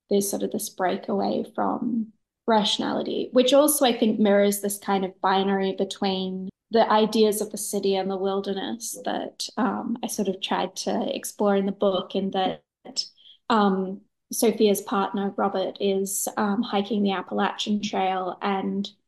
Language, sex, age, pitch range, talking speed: English, female, 20-39, 195-225 Hz, 155 wpm